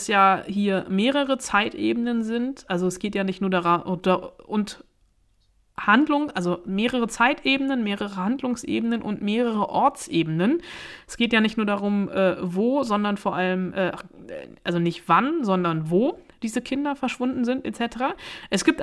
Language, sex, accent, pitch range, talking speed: German, female, German, 195-245 Hz, 145 wpm